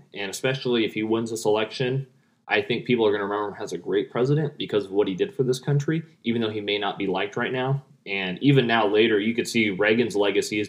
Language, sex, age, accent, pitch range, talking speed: English, male, 20-39, American, 110-160 Hz, 260 wpm